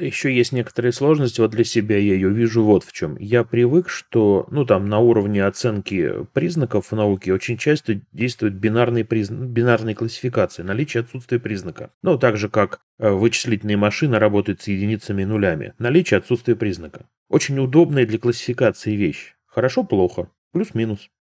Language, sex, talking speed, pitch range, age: Russian, male, 160 wpm, 105-125 Hz, 30-49